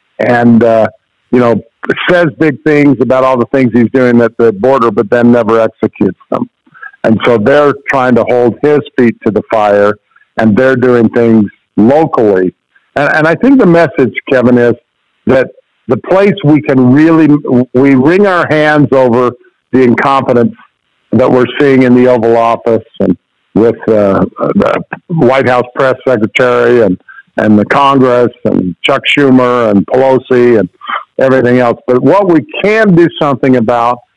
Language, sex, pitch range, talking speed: English, male, 120-150 Hz, 160 wpm